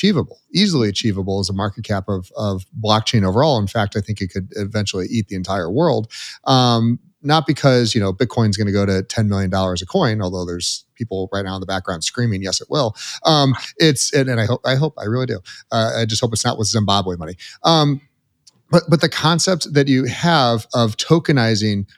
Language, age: English, 30-49